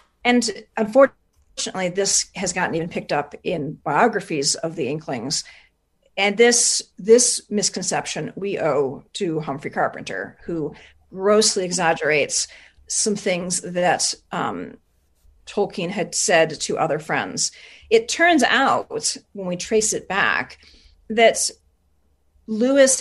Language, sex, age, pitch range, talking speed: English, female, 40-59, 180-240 Hz, 115 wpm